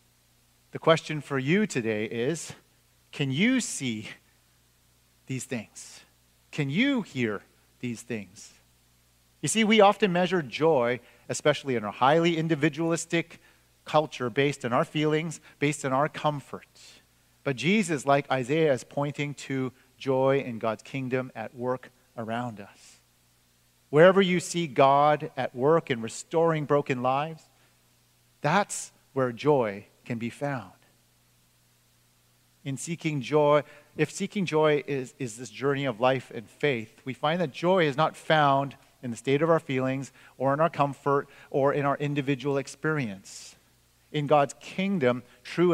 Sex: male